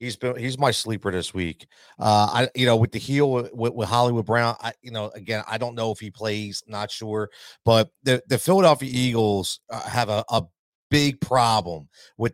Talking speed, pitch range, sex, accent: 205 wpm, 105-135 Hz, male, American